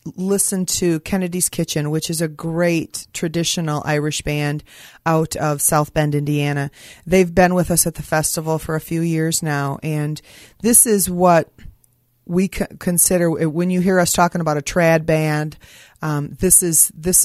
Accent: American